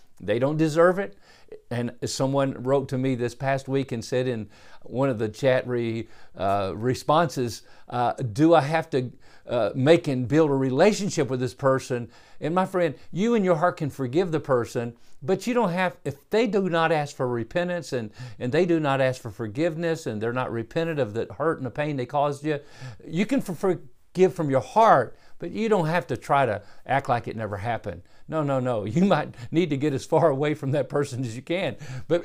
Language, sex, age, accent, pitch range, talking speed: English, male, 50-69, American, 120-165 Hz, 210 wpm